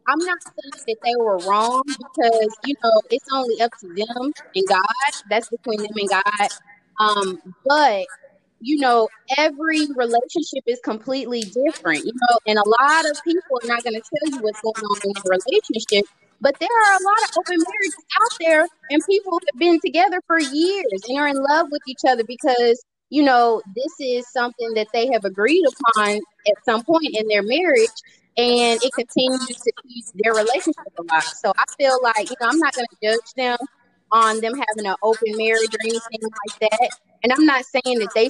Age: 20-39